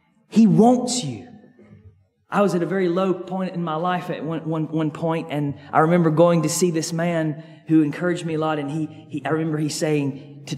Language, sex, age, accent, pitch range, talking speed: English, male, 30-49, American, 125-160 Hz, 220 wpm